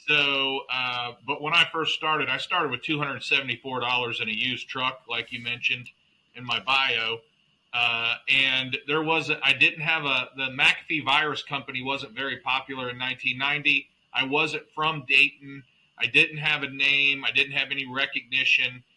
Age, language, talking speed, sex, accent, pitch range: 40-59, English, 165 wpm, male, American, 130-150 Hz